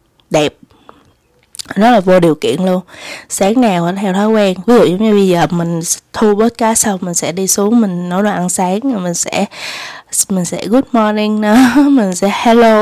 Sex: female